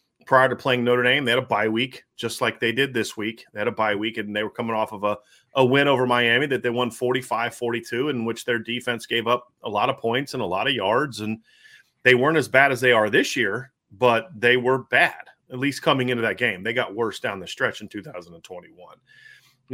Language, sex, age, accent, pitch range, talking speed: English, male, 30-49, American, 115-130 Hz, 240 wpm